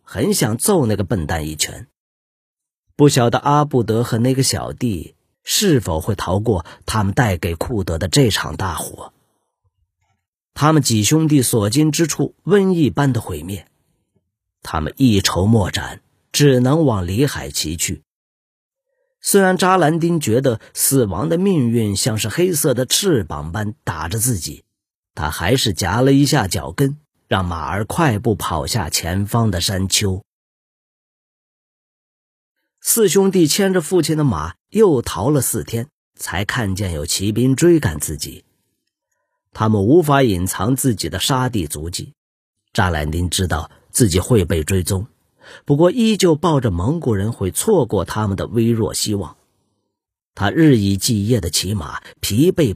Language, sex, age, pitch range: Chinese, male, 40-59, 95-145 Hz